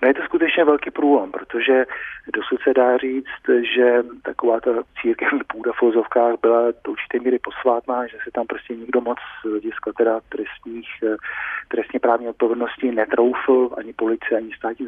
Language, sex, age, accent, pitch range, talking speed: Czech, male, 40-59, native, 115-135 Hz, 155 wpm